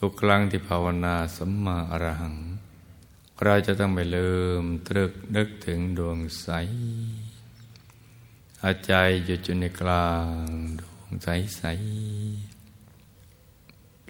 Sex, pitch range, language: male, 80-95 Hz, Thai